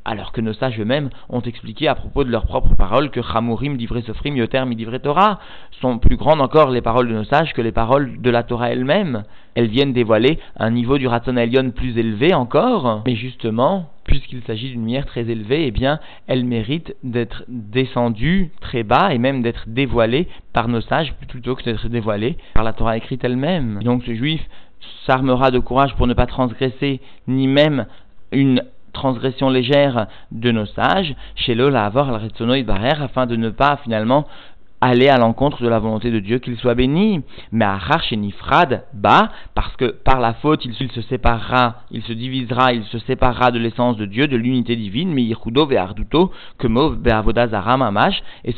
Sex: male